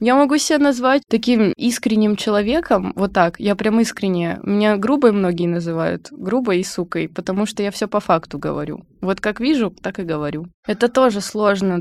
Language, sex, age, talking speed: Russian, female, 20-39, 180 wpm